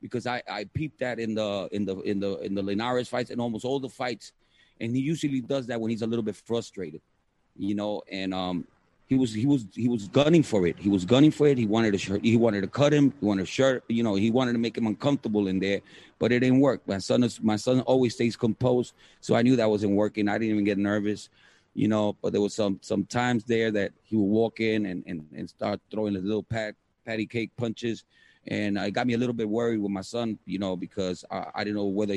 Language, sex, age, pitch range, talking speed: English, male, 30-49, 100-120 Hz, 255 wpm